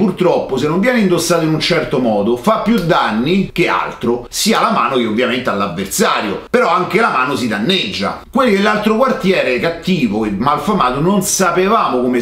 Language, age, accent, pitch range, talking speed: Italian, 40-59, native, 130-215 Hz, 170 wpm